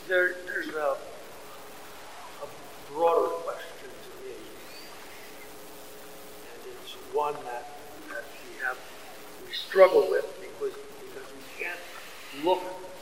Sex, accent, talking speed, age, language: male, American, 95 wpm, 60-79, English